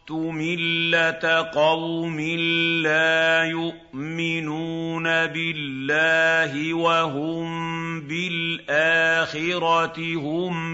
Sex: male